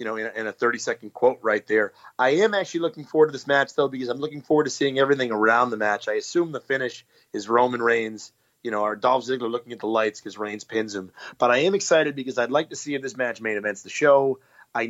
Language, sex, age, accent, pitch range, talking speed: English, male, 30-49, American, 120-150 Hz, 260 wpm